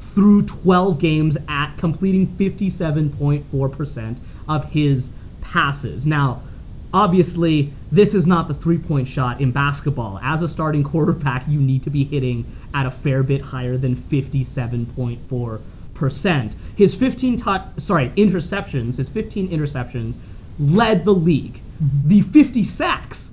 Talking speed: 125 wpm